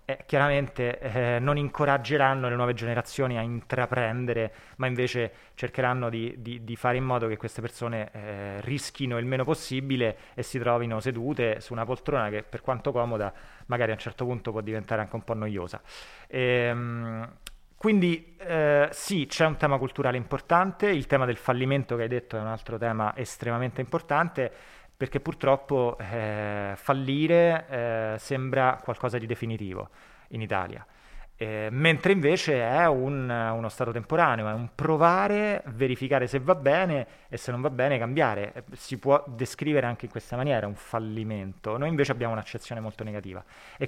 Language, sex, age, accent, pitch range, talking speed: Italian, male, 20-39, native, 115-140 Hz, 160 wpm